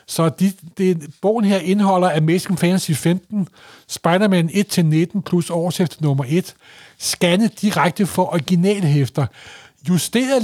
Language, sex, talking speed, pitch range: Danish, male, 115 wpm, 150-190 Hz